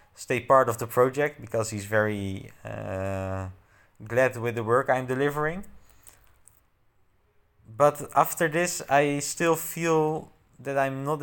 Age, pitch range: 20-39, 110-145 Hz